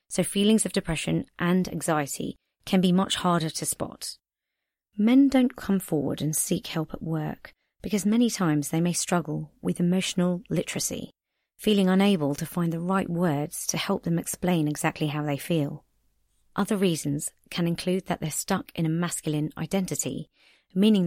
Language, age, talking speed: English, 30-49, 160 wpm